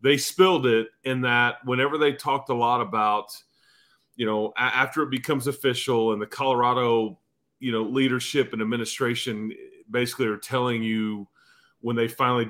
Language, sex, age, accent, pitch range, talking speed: English, male, 40-59, American, 110-135 Hz, 155 wpm